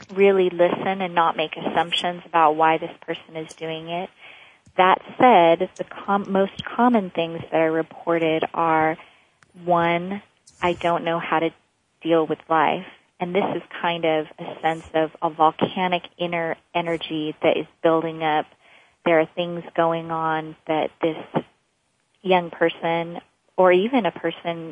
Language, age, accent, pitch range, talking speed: English, 30-49, American, 160-175 Hz, 150 wpm